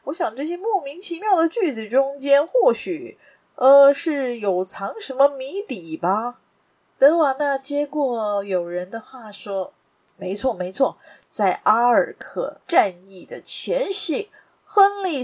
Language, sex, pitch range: Chinese, female, 195-320 Hz